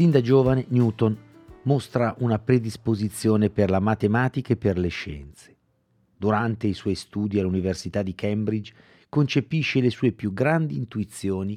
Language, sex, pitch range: Italian, male, 90-115 Hz